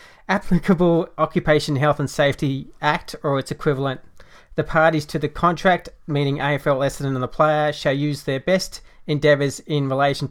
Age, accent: 30-49, Australian